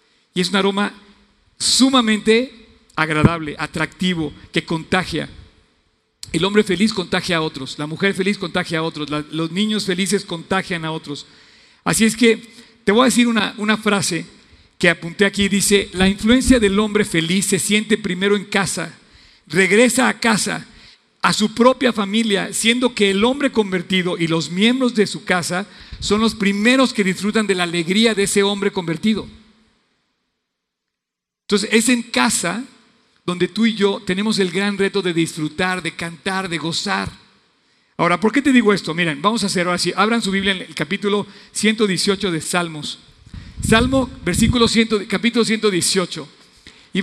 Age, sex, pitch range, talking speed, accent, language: 50-69, male, 175-215 Hz, 160 wpm, Mexican, Spanish